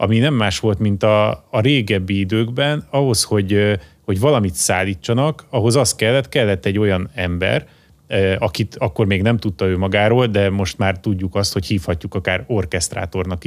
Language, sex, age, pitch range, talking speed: Hungarian, male, 30-49, 95-115 Hz, 165 wpm